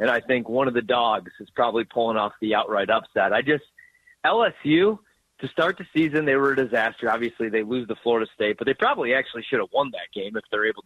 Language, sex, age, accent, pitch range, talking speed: English, male, 30-49, American, 120-160 Hz, 240 wpm